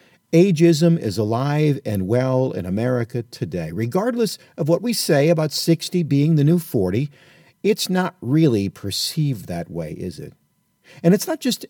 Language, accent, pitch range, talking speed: English, American, 120-170 Hz, 160 wpm